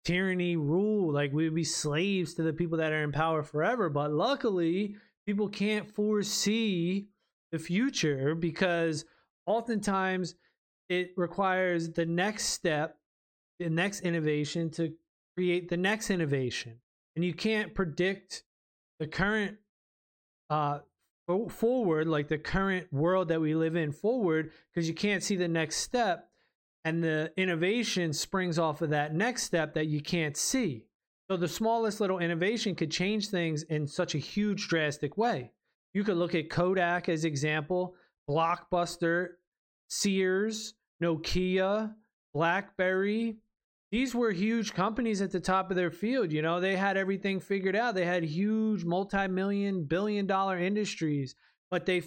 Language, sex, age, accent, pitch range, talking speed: English, male, 20-39, American, 160-200 Hz, 145 wpm